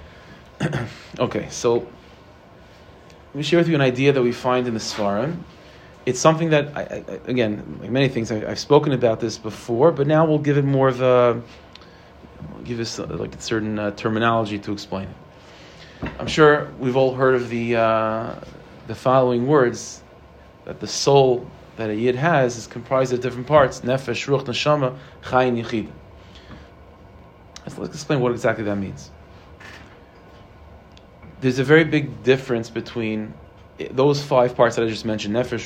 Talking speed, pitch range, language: 165 wpm, 100-130 Hz, English